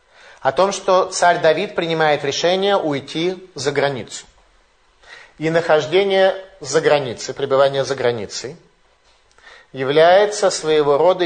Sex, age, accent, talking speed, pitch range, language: male, 30-49, native, 105 wpm, 140-185 Hz, Russian